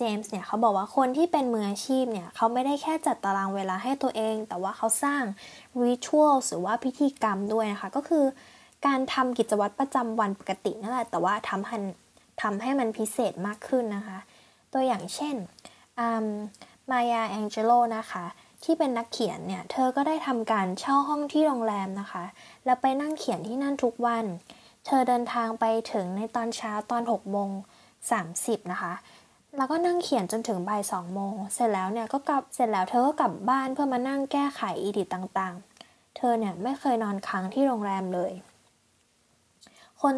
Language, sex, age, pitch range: Thai, female, 10-29, 205-260 Hz